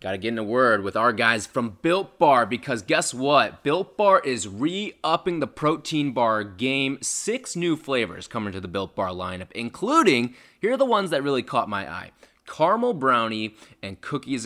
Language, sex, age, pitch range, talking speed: English, male, 20-39, 110-165 Hz, 185 wpm